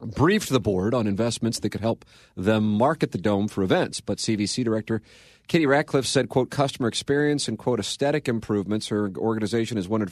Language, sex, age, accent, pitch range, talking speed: English, male, 40-59, American, 100-120 Hz, 185 wpm